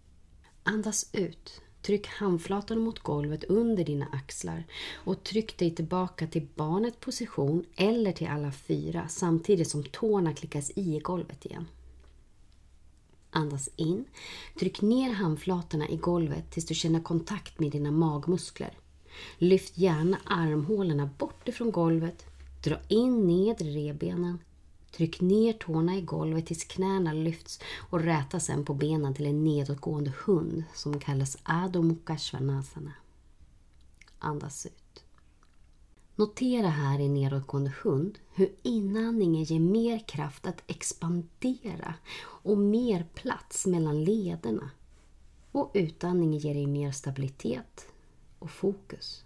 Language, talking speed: Swedish, 120 wpm